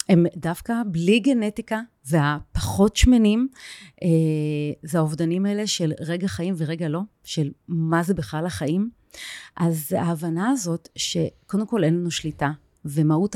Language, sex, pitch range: Hebrew, female, 160-210 Hz